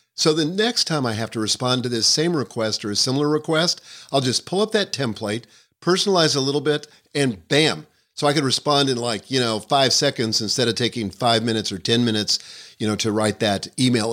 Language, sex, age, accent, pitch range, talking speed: English, male, 50-69, American, 110-140 Hz, 220 wpm